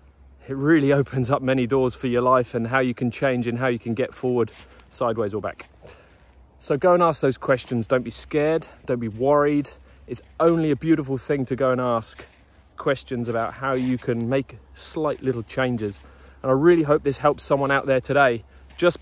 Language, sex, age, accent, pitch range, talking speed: English, male, 30-49, British, 110-140 Hz, 200 wpm